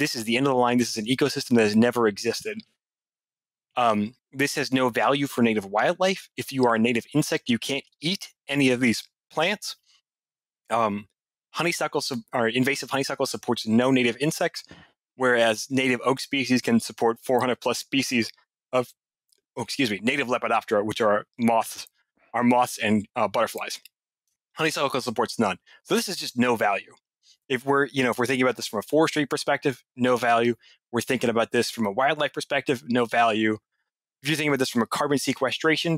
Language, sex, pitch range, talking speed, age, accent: English, male, 115-140 Hz, 185 wpm, 30-49, American